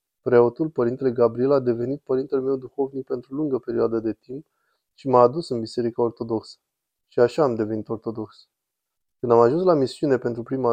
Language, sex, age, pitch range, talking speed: Romanian, male, 20-39, 115-135 Hz, 175 wpm